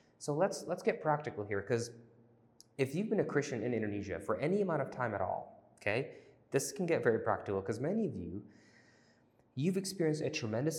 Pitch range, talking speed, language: 115-155 Hz, 195 wpm, English